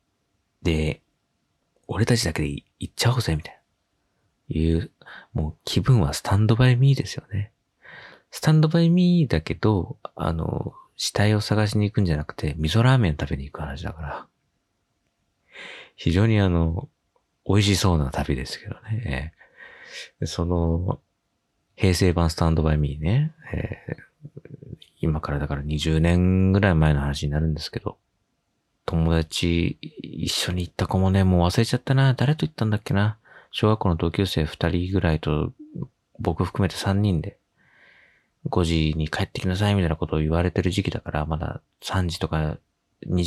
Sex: male